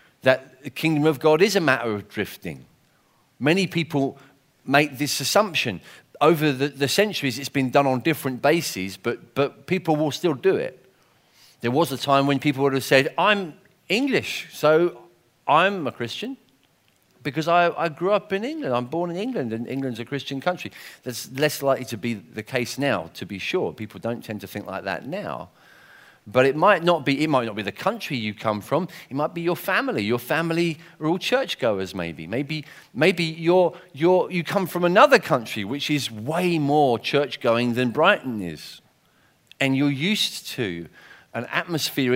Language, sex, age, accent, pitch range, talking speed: English, male, 40-59, British, 125-170 Hz, 185 wpm